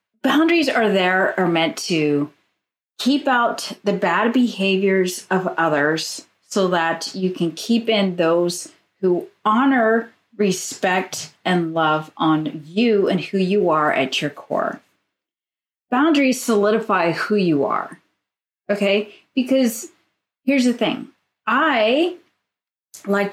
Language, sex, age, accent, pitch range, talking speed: English, female, 30-49, American, 185-250 Hz, 120 wpm